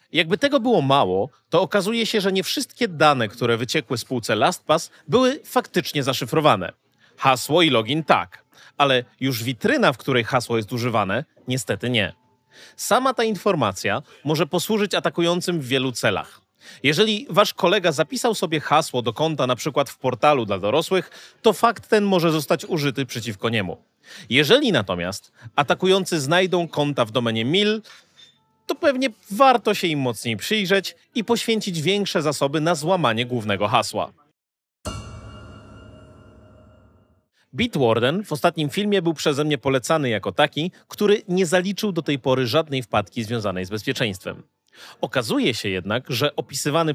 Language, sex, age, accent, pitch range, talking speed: Polish, male, 30-49, native, 120-190 Hz, 145 wpm